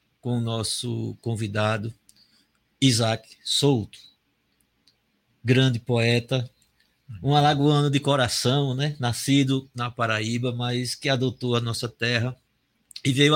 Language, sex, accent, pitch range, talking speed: Portuguese, male, Brazilian, 115-145 Hz, 110 wpm